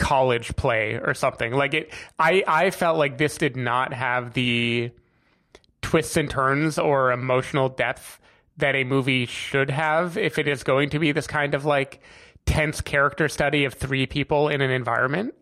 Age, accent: 30-49, American